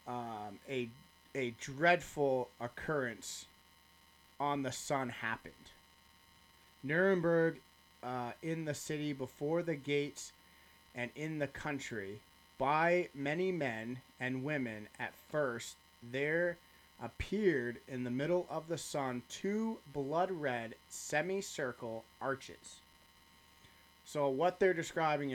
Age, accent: 30-49, American